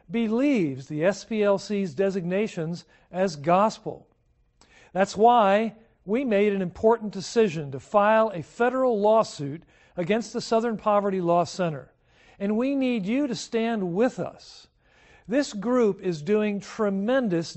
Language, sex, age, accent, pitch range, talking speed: English, male, 50-69, American, 180-230 Hz, 125 wpm